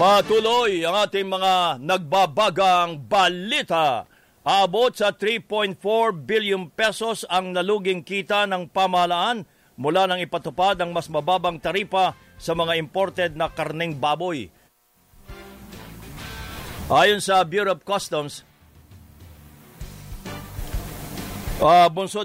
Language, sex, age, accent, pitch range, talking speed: English, male, 50-69, Filipino, 165-195 Hz, 95 wpm